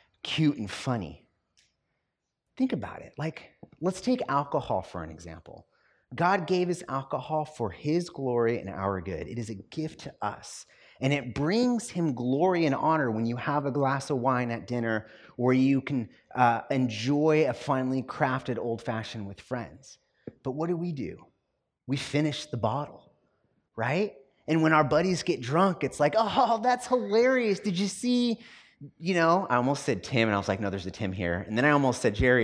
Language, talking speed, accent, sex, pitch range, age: English, 185 wpm, American, male, 115-175 Hz, 30-49